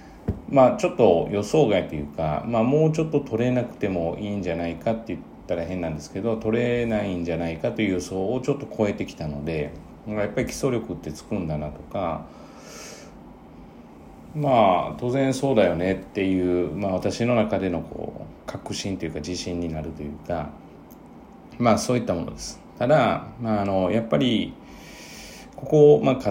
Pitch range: 90-115 Hz